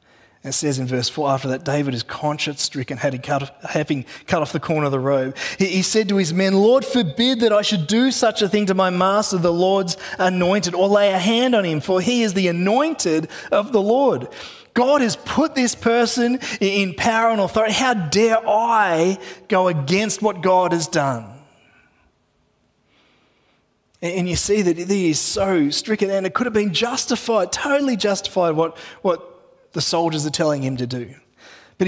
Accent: Australian